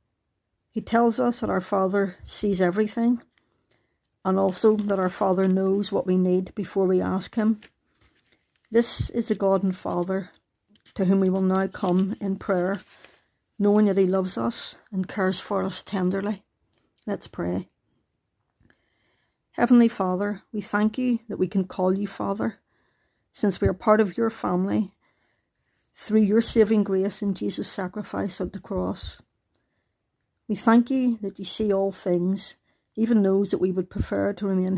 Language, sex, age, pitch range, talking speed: English, female, 60-79, 185-215 Hz, 155 wpm